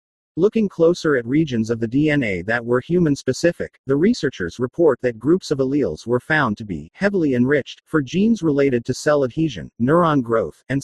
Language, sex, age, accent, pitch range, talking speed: English, male, 40-59, American, 120-160 Hz, 175 wpm